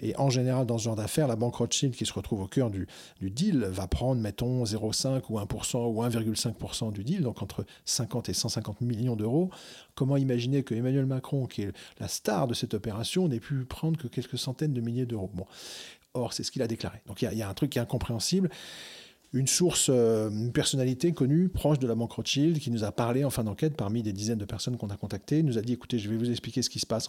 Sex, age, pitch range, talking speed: male, 40-59, 115-140 Hz, 245 wpm